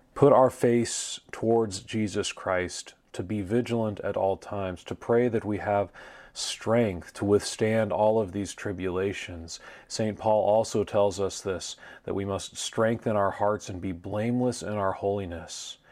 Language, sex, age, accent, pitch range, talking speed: English, male, 40-59, American, 95-110 Hz, 160 wpm